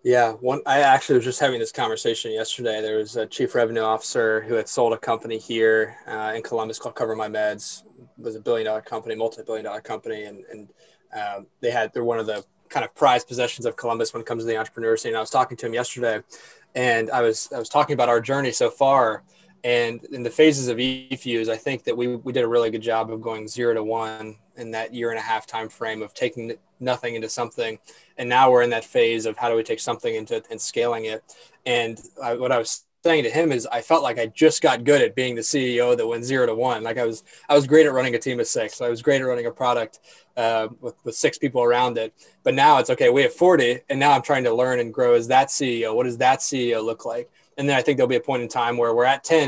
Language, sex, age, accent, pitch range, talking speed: English, male, 20-39, American, 115-135 Hz, 265 wpm